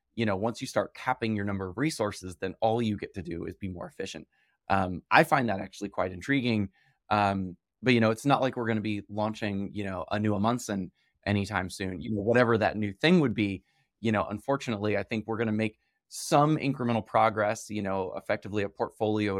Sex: male